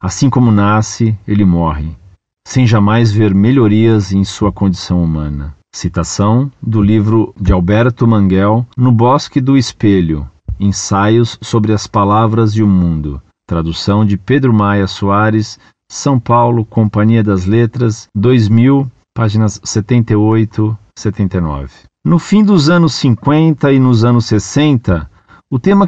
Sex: male